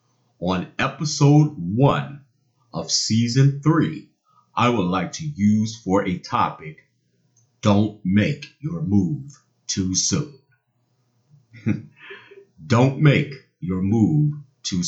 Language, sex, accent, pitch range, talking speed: English, male, American, 110-150 Hz, 100 wpm